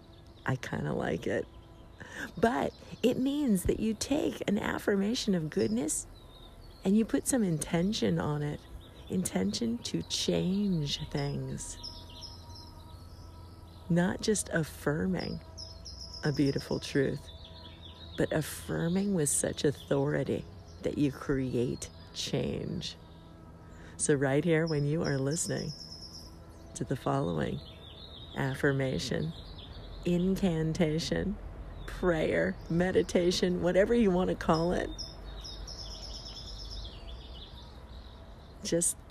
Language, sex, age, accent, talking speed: English, female, 40-59, American, 95 wpm